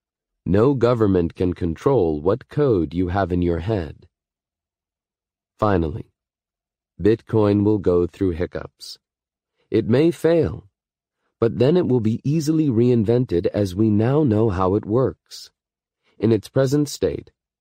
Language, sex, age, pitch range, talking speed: English, male, 40-59, 90-115 Hz, 130 wpm